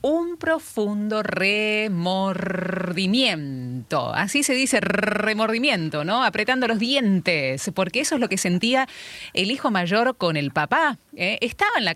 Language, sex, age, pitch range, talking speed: Spanish, female, 30-49, 165-245 Hz, 135 wpm